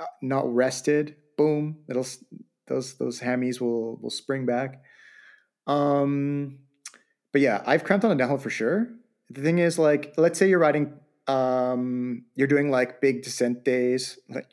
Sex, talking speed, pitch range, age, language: male, 155 wpm, 120-150 Hz, 30-49, English